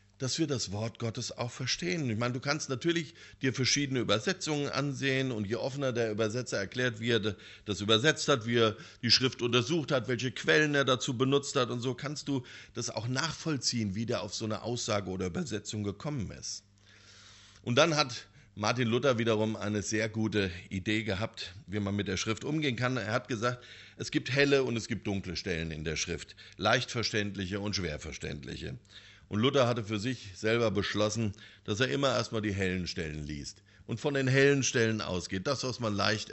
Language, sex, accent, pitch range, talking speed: German, male, German, 100-135 Hz, 195 wpm